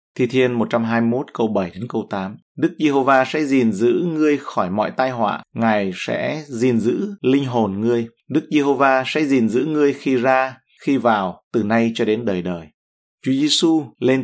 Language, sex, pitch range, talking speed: Vietnamese, male, 115-140 Hz, 185 wpm